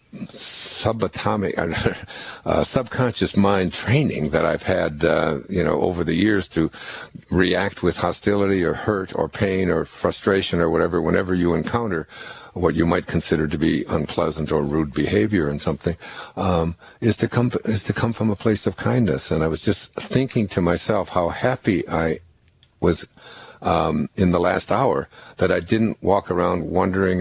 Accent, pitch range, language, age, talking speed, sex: American, 80-100 Hz, English, 60-79, 165 wpm, male